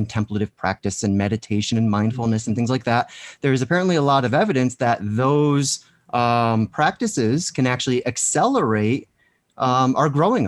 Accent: American